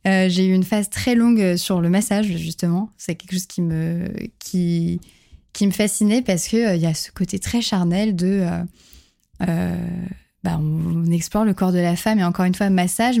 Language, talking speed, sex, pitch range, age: French, 210 wpm, female, 175-205 Hz, 20-39